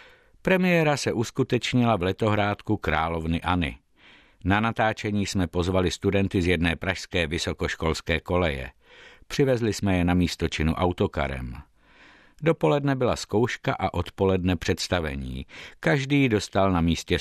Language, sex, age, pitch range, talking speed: Czech, male, 60-79, 85-120 Hz, 115 wpm